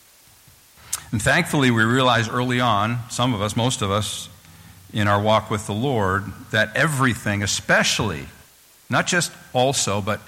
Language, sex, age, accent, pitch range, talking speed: English, male, 50-69, American, 90-125 Hz, 145 wpm